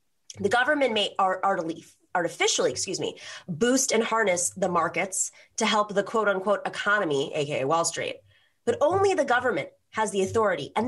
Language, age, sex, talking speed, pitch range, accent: English, 20-39, female, 140 wpm, 165-235 Hz, American